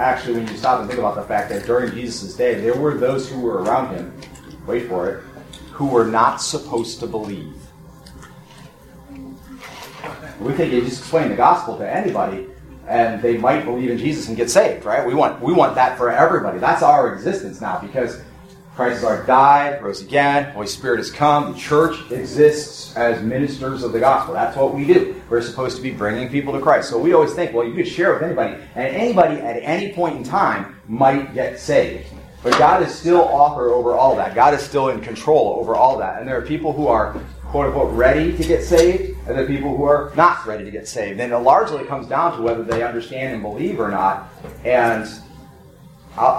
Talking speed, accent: 210 wpm, American